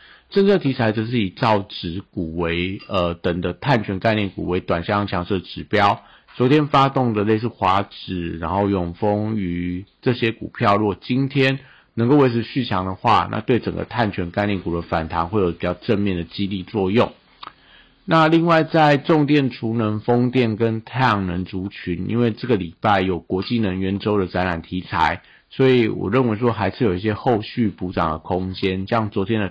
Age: 50-69